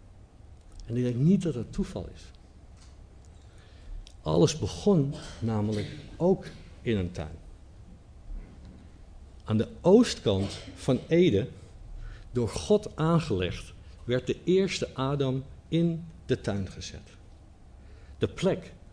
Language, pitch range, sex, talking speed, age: Dutch, 90-120 Hz, male, 110 wpm, 60-79